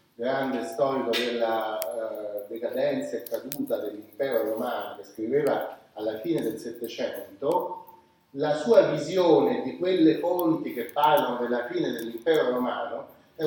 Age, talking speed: 30-49, 125 wpm